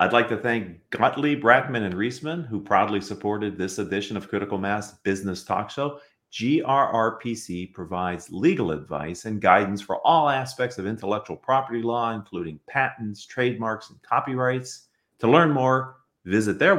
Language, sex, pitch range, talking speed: English, male, 105-140 Hz, 150 wpm